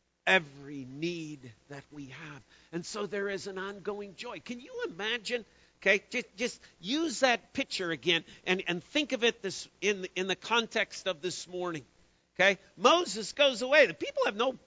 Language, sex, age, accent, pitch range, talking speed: English, male, 50-69, American, 195-270 Hz, 175 wpm